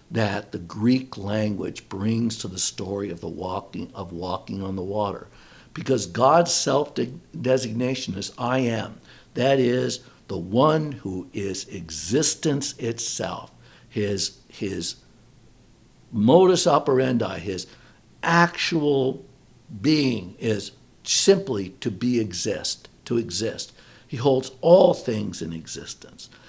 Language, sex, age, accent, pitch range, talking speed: English, male, 60-79, American, 105-135 Hz, 115 wpm